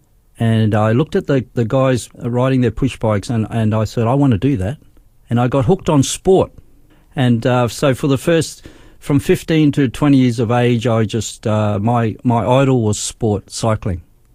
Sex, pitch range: male, 110-135 Hz